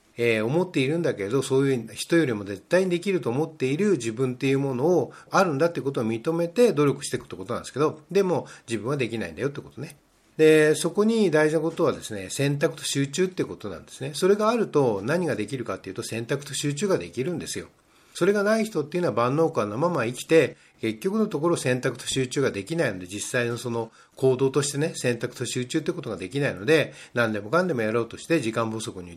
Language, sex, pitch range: Japanese, male, 115-165 Hz